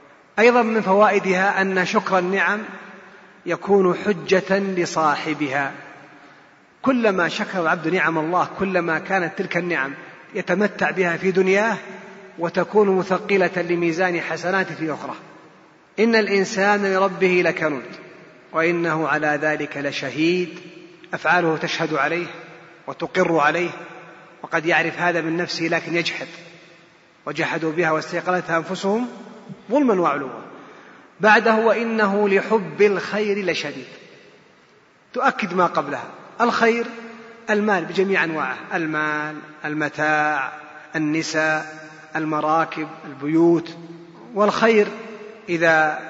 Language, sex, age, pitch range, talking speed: Arabic, male, 30-49, 160-200 Hz, 95 wpm